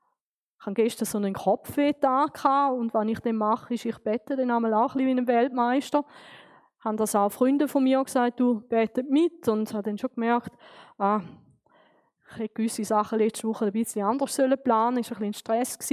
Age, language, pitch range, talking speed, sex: 20-39, German, 215-260 Hz, 205 wpm, female